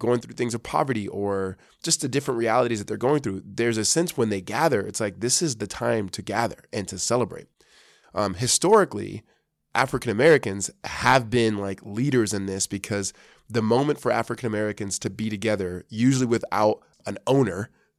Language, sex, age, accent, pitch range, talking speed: English, male, 20-39, American, 100-120 Hz, 180 wpm